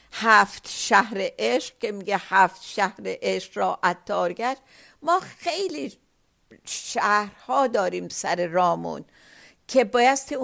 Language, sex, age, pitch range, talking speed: Persian, female, 50-69, 200-250 Hz, 100 wpm